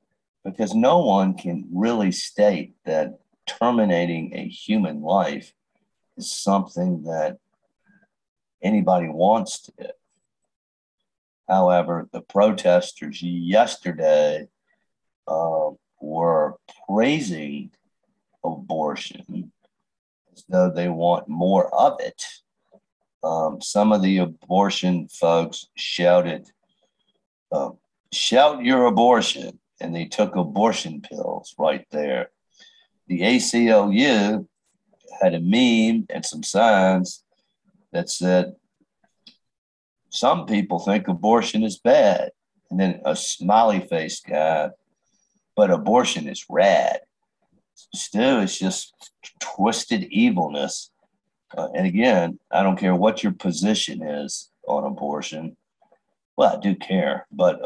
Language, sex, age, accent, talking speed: English, male, 50-69, American, 105 wpm